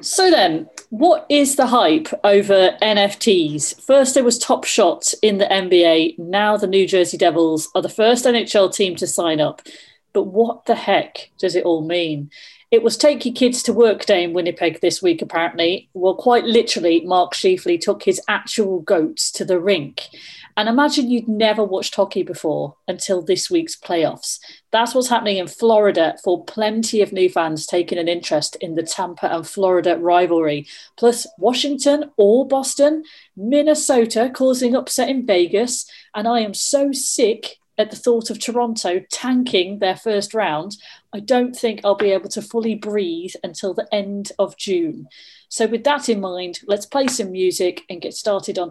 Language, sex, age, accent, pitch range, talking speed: English, female, 40-59, British, 180-245 Hz, 175 wpm